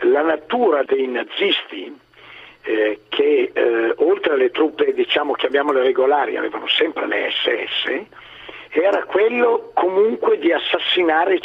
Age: 50-69